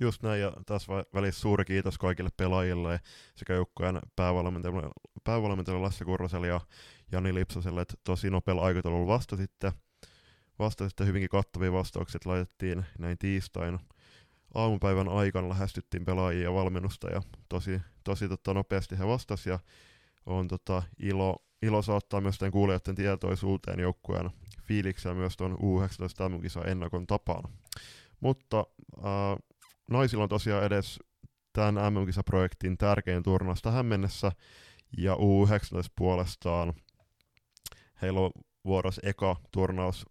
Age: 20-39